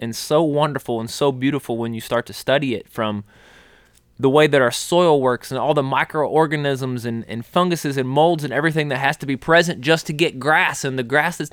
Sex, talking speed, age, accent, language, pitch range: male, 225 wpm, 20-39, American, English, 120-145 Hz